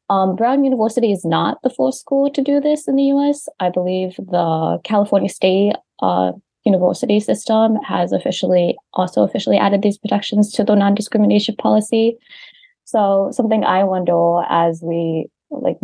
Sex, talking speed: female, 150 wpm